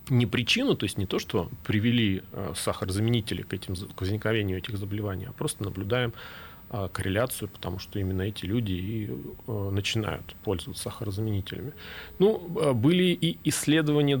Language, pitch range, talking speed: Russian, 95-125 Hz, 130 wpm